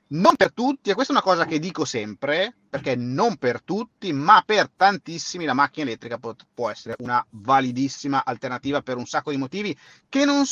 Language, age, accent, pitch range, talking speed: Italian, 30-49, native, 120-195 Hz, 195 wpm